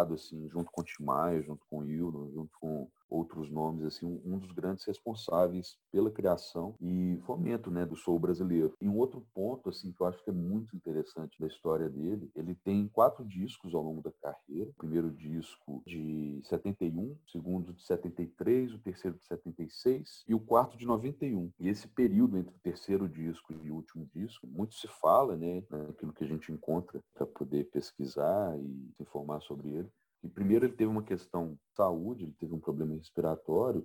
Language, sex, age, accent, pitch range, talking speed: Portuguese, male, 40-59, Brazilian, 80-100 Hz, 185 wpm